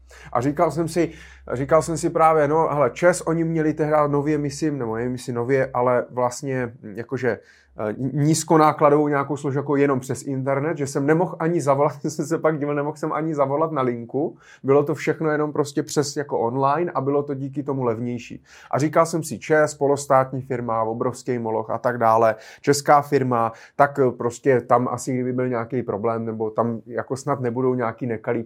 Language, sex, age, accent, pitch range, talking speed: Czech, male, 30-49, native, 120-150 Hz, 185 wpm